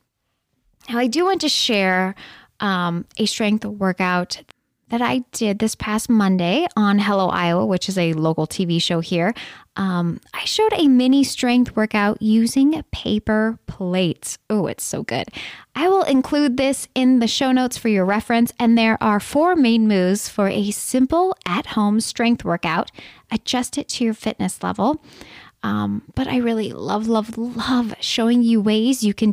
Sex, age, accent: female, 10-29, American